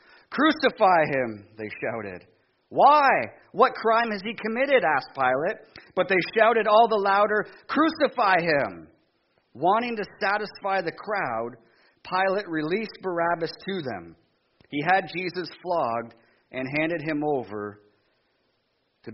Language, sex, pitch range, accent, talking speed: English, male, 140-190 Hz, American, 120 wpm